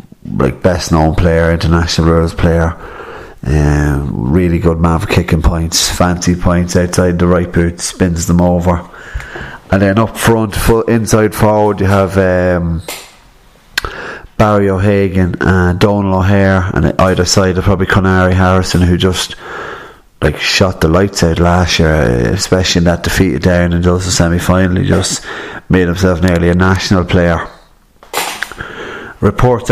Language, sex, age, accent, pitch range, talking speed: English, male, 30-49, Irish, 85-100 Hz, 145 wpm